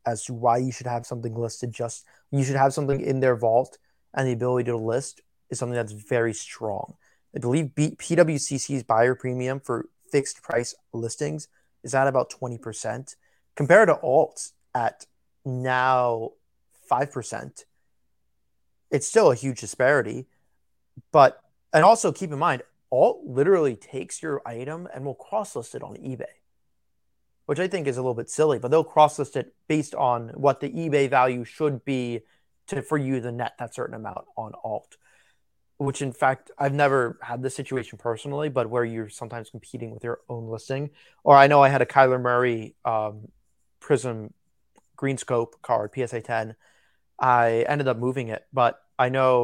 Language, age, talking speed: English, 30-49, 170 wpm